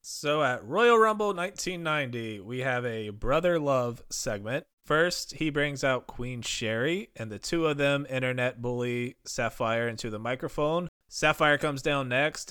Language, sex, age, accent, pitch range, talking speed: English, male, 20-39, American, 115-145 Hz, 155 wpm